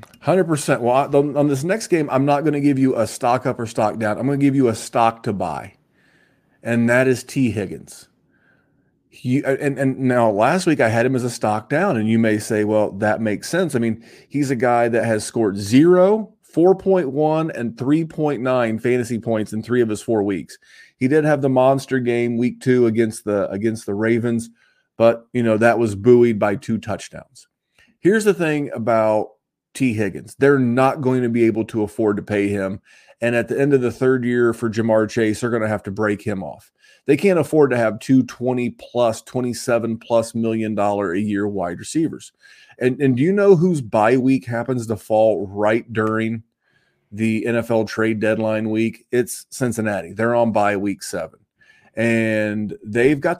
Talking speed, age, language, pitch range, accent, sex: 190 wpm, 30-49, English, 110-130 Hz, American, male